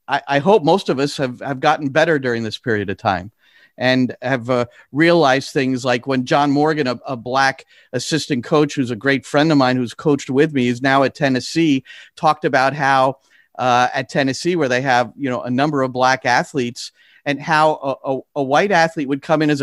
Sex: male